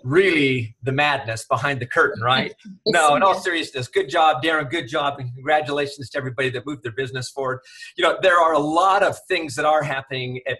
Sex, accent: male, American